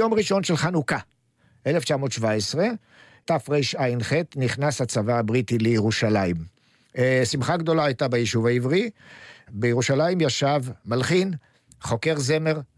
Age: 50-69